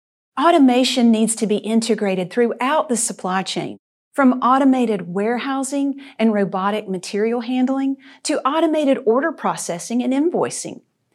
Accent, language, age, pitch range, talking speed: American, English, 40-59, 200-265 Hz, 120 wpm